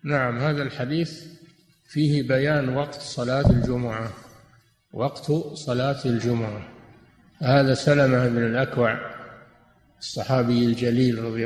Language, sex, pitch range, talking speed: Arabic, male, 125-145 Hz, 95 wpm